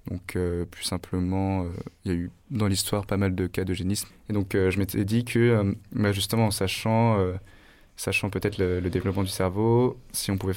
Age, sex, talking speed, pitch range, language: 20-39, male, 220 wpm, 95-105 Hz, French